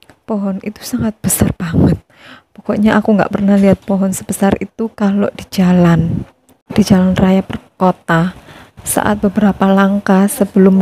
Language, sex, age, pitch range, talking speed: Indonesian, female, 20-39, 190-215 Hz, 135 wpm